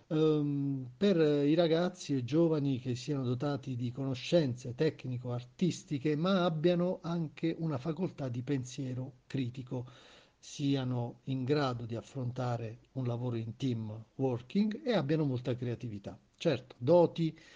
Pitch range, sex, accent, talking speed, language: 125-165 Hz, male, native, 125 wpm, Italian